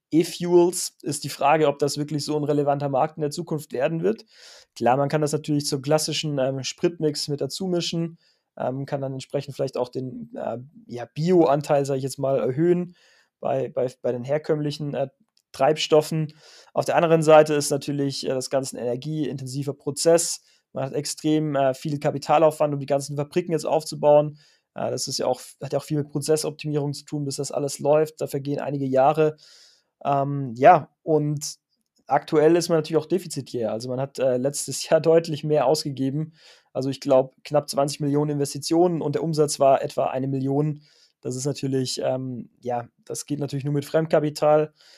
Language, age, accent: German, 30-49, German